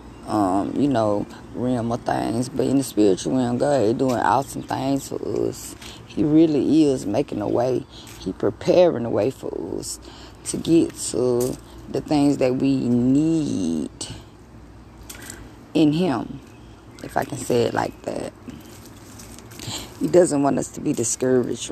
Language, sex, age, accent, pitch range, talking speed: English, female, 20-39, American, 115-155 Hz, 150 wpm